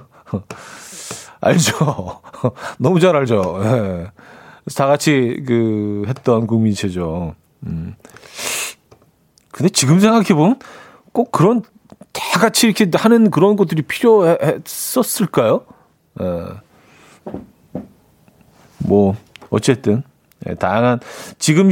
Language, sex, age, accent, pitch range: Korean, male, 40-59, native, 110-155 Hz